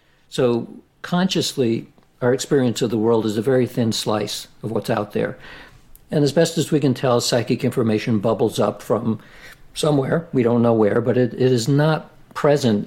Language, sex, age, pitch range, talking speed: English, male, 60-79, 110-135 Hz, 180 wpm